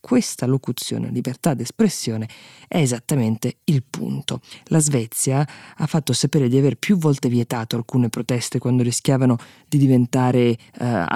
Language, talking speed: Italian, 135 wpm